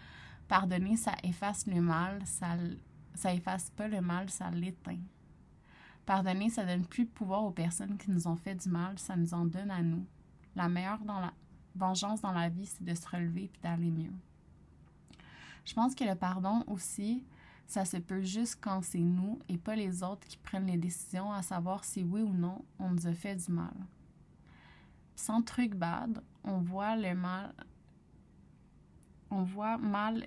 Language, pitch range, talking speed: French, 175-205 Hz, 180 wpm